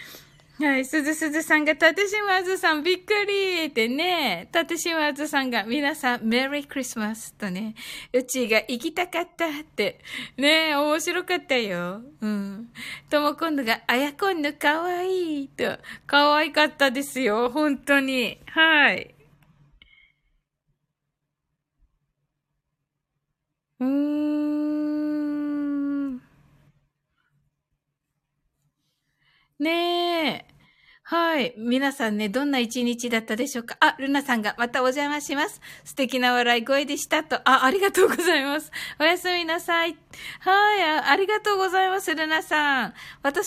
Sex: female